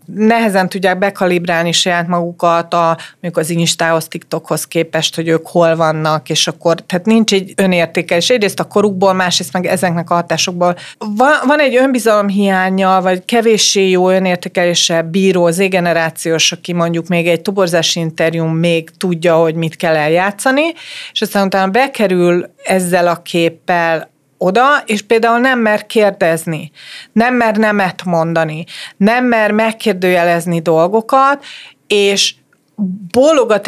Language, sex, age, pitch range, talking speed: Hungarian, female, 30-49, 175-215 Hz, 130 wpm